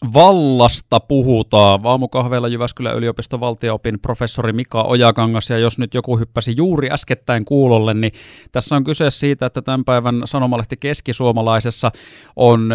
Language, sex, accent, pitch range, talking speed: Finnish, male, native, 110-125 Hz, 130 wpm